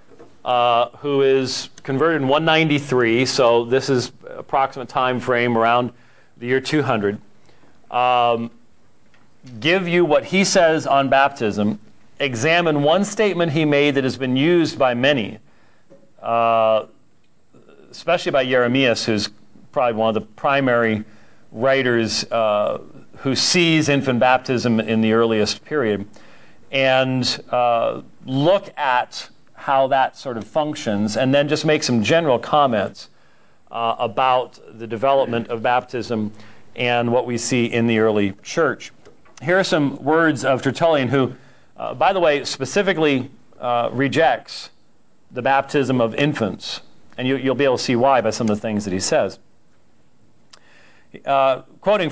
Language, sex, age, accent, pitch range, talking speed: English, male, 40-59, American, 115-145 Hz, 140 wpm